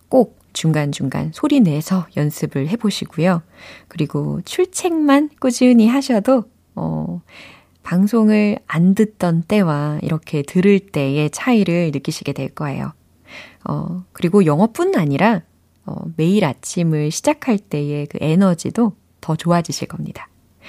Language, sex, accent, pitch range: Korean, female, native, 160-240 Hz